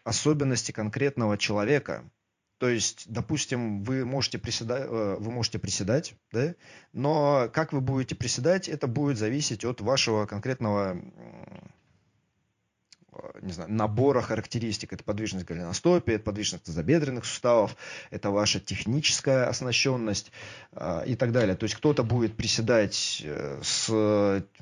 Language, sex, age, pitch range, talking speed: Russian, male, 30-49, 110-130 Hz, 115 wpm